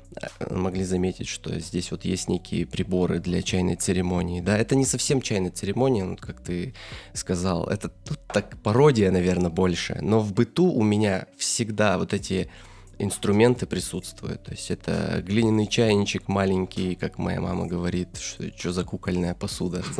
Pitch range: 95-115 Hz